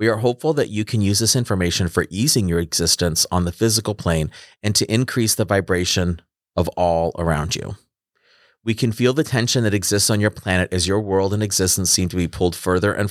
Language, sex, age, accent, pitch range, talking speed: English, male, 30-49, American, 85-105 Hz, 215 wpm